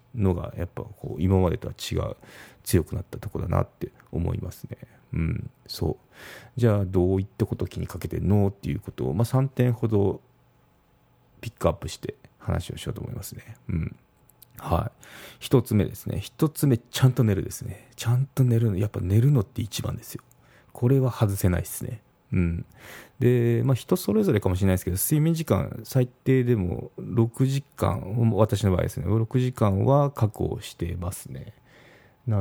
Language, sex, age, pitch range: Japanese, male, 30-49, 95-125 Hz